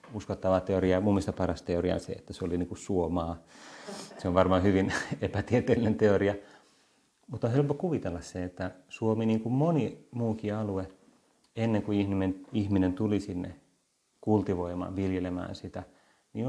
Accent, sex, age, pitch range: native, male, 30-49, 95-110 Hz